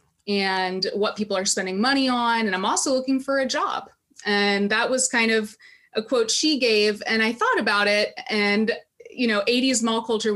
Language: English